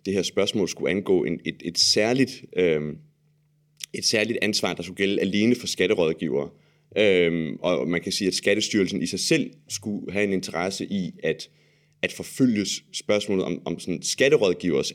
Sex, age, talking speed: male, 30-49, 170 wpm